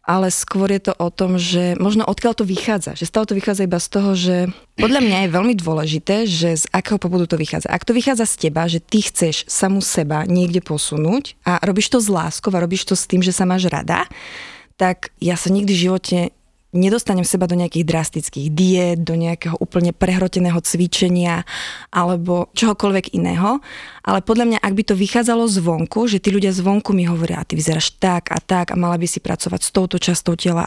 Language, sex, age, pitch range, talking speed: Slovak, female, 20-39, 175-200 Hz, 205 wpm